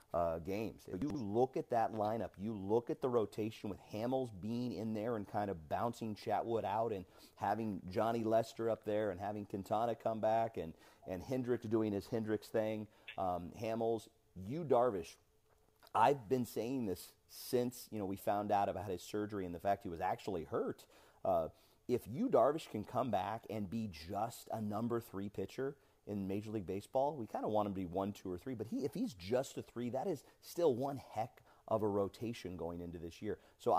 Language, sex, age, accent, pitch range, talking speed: English, male, 40-59, American, 95-115 Hz, 200 wpm